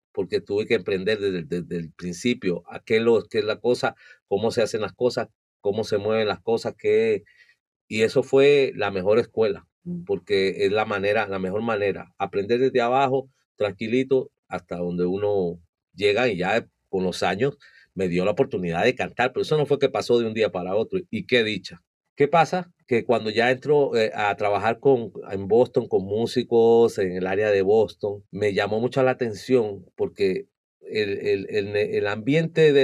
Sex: male